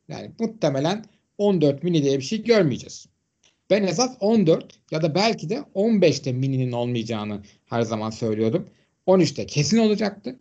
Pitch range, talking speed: 120-155 Hz, 150 wpm